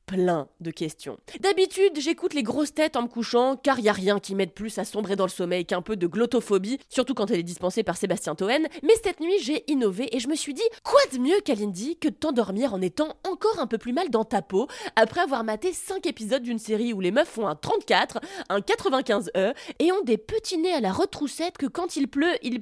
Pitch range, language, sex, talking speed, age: 205-315 Hz, French, female, 240 wpm, 20-39